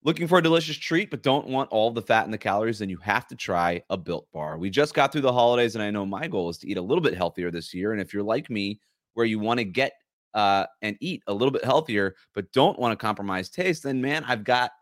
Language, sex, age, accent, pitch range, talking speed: English, male, 30-49, American, 100-135 Hz, 275 wpm